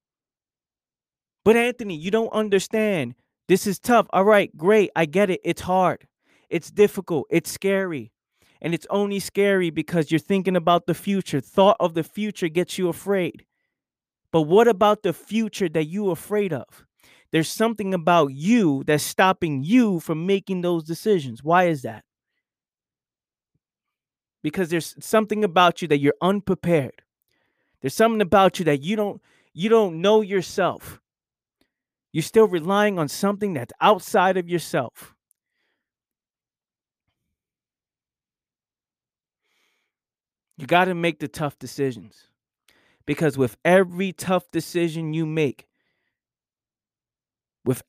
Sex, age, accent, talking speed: male, 20-39, American, 130 wpm